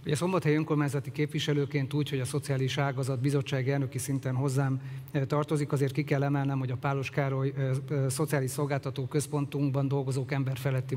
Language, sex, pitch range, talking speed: Hungarian, male, 140-155 Hz, 150 wpm